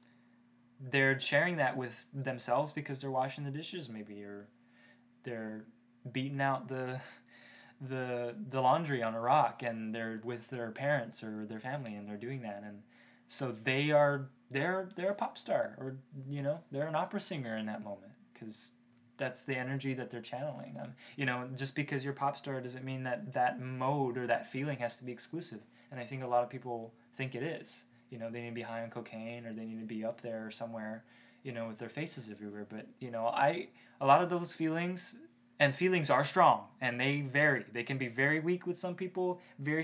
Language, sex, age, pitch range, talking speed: English, male, 20-39, 120-140 Hz, 210 wpm